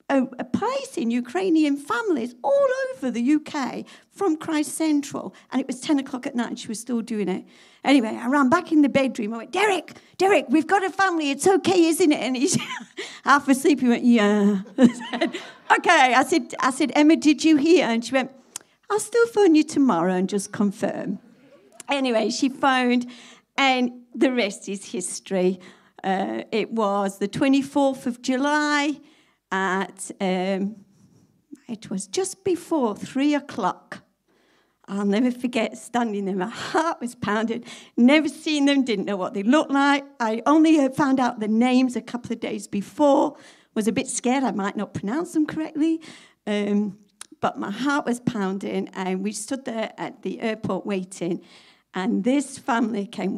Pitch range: 215-295 Hz